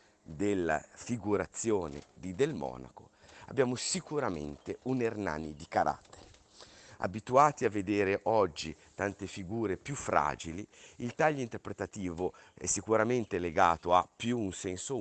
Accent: native